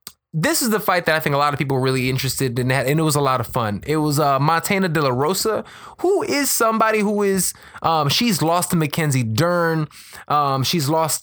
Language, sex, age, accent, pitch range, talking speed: English, male, 20-39, American, 135-175 Hz, 230 wpm